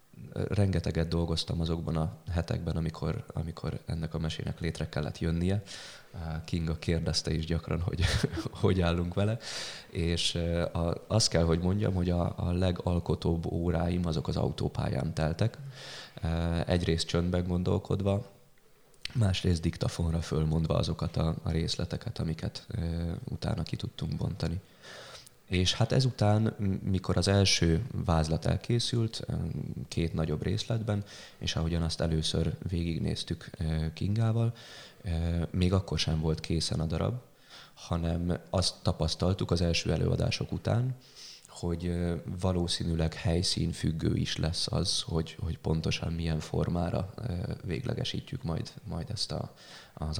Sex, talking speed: male, 120 wpm